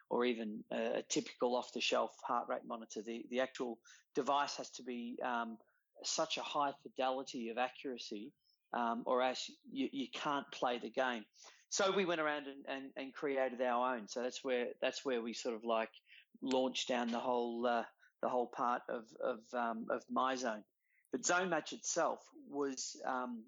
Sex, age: male, 40-59